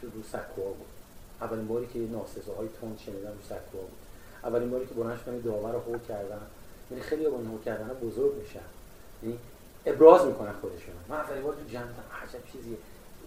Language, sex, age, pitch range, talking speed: Persian, male, 30-49, 105-125 Hz, 165 wpm